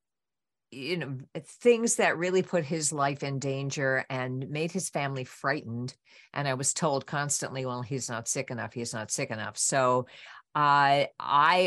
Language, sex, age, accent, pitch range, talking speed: English, female, 50-69, American, 120-145 Hz, 165 wpm